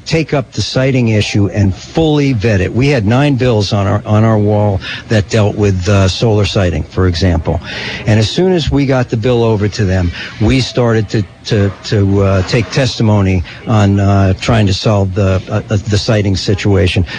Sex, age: male, 60-79